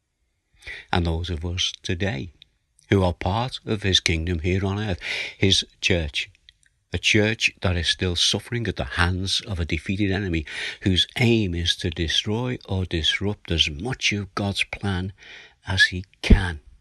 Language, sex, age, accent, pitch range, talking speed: English, male, 60-79, British, 80-100 Hz, 155 wpm